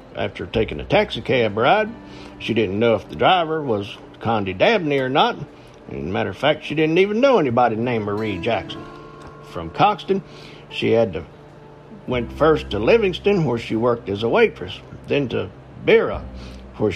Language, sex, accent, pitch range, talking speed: English, male, American, 105-150 Hz, 175 wpm